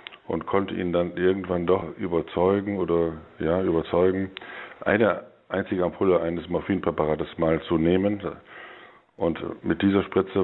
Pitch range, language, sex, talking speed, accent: 80-90 Hz, German, male, 125 wpm, German